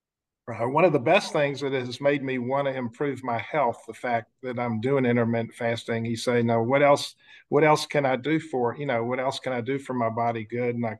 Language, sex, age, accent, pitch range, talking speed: English, male, 50-69, American, 125-145 Hz, 245 wpm